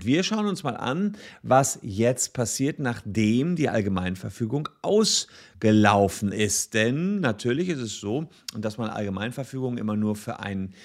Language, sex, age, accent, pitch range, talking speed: German, male, 40-59, German, 100-140 Hz, 140 wpm